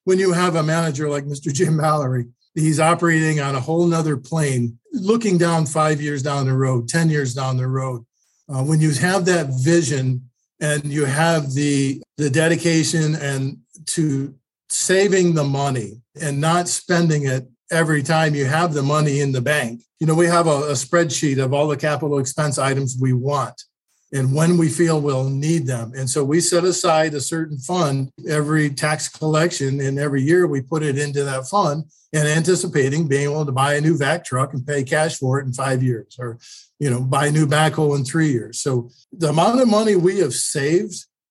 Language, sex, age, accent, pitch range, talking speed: English, male, 50-69, American, 135-165 Hz, 200 wpm